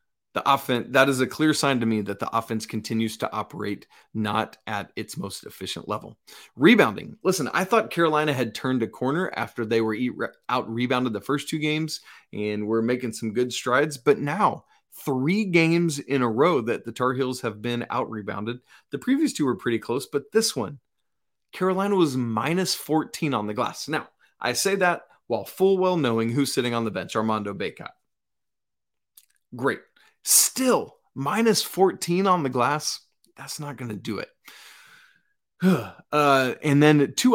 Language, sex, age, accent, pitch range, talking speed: English, male, 30-49, American, 110-150 Hz, 170 wpm